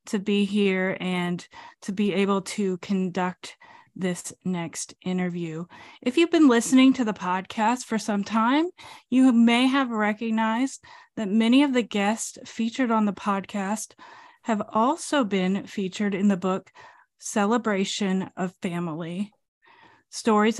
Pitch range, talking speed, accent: 190-235 Hz, 135 wpm, American